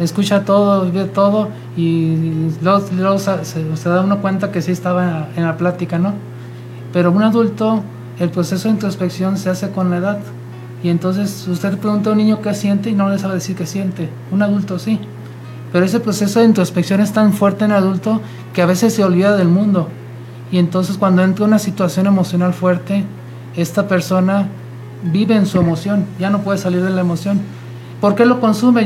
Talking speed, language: 200 wpm, Spanish